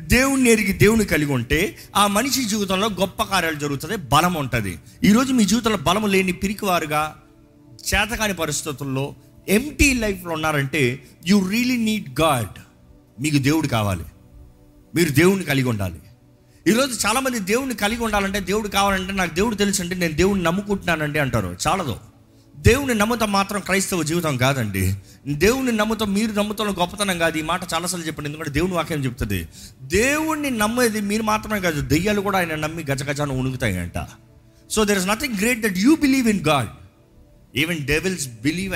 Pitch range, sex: 140-215 Hz, male